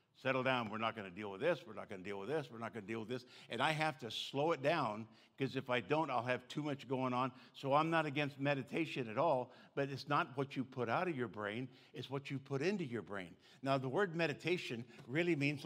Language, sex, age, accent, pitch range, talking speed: English, male, 60-79, American, 125-165 Hz, 270 wpm